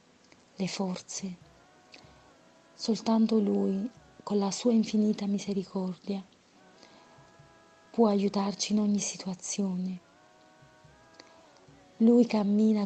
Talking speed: 70 wpm